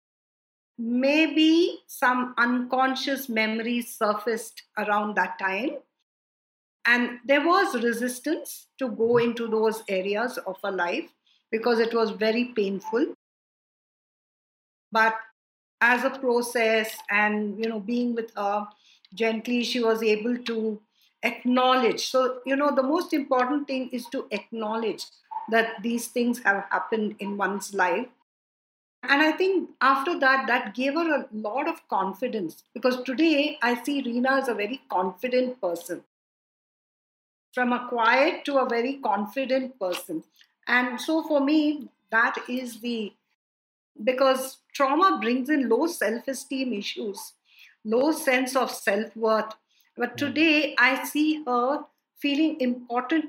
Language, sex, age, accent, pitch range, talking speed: English, female, 50-69, Indian, 225-275 Hz, 130 wpm